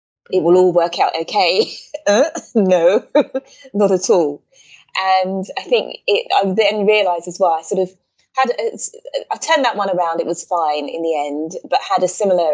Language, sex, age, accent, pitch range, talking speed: English, female, 20-39, British, 175-235 Hz, 180 wpm